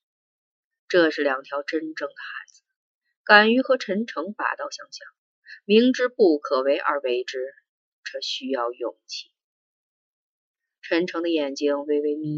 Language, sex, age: Chinese, female, 30-49